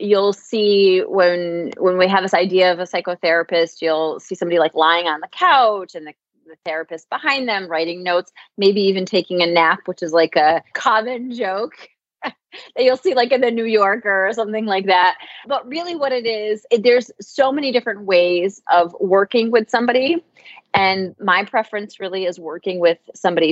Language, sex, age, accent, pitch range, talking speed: English, female, 30-49, American, 170-225 Hz, 185 wpm